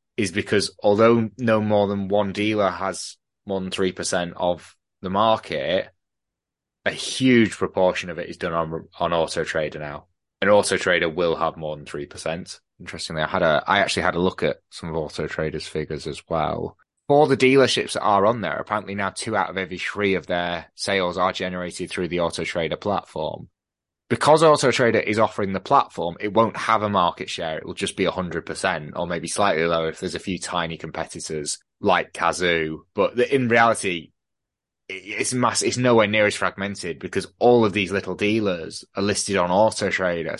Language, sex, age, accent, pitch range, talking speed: English, male, 20-39, British, 90-110 Hz, 185 wpm